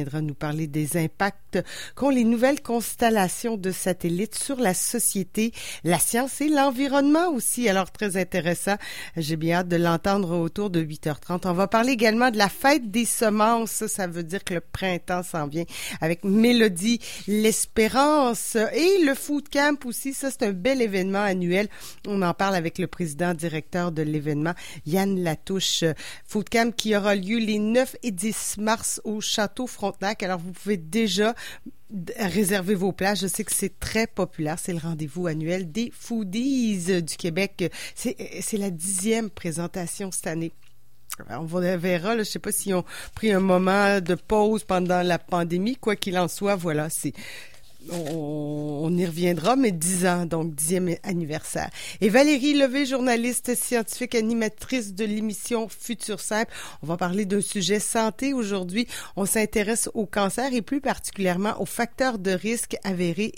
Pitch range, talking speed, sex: 175-225 Hz, 170 wpm, female